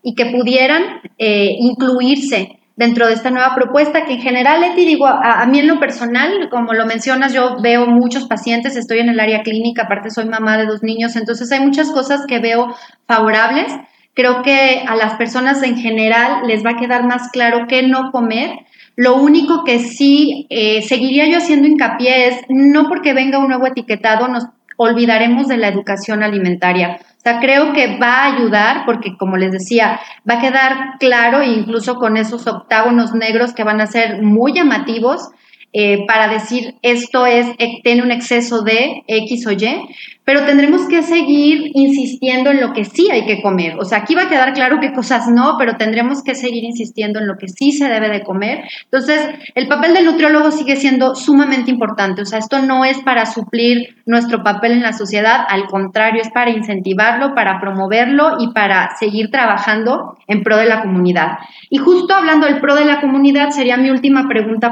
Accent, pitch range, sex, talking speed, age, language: Mexican, 220-270 Hz, female, 190 wpm, 30-49, Spanish